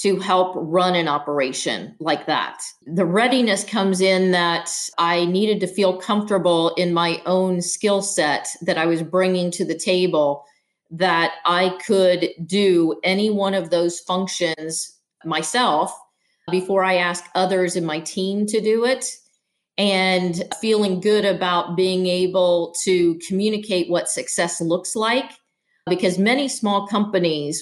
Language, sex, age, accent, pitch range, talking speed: English, female, 40-59, American, 170-195 Hz, 140 wpm